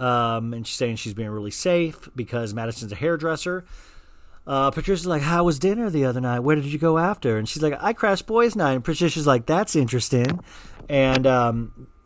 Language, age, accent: English, 40-59, American